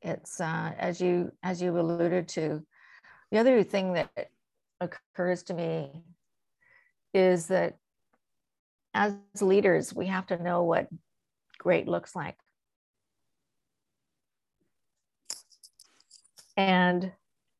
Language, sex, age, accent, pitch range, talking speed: English, female, 50-69, American, 180-205 Hz, 95 wpm